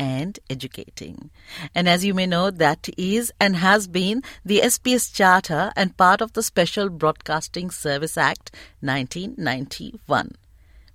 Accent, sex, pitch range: native, female, 160-220 Hz